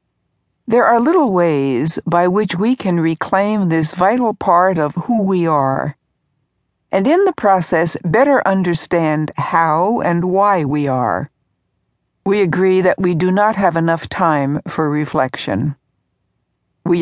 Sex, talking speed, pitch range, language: female, 140 wpm, 145-185 Hz, English